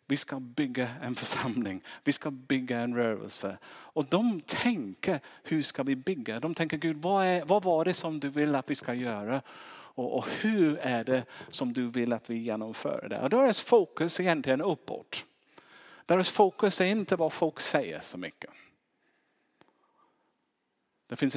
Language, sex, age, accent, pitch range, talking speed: Swedish, male, 50-69, Norwegian, 105-150 Hz, 175 wpm